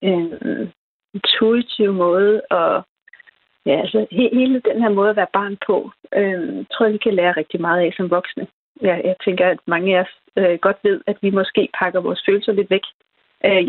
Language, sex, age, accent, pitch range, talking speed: Danish, female, 30-49, native, 185-220 Hz, 195 wpm